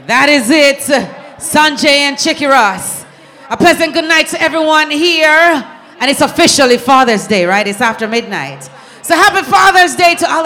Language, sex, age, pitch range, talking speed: English, female, 30-49, 245-310 Hz, 165 wpm